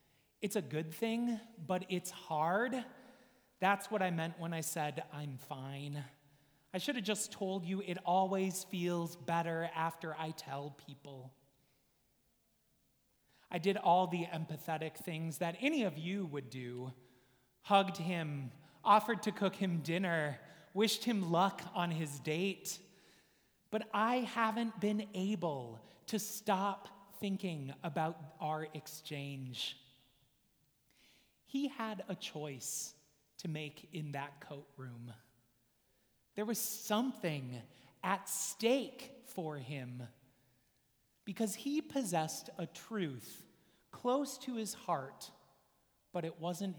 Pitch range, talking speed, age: 140-195 Hz, 120 wpm, 30-49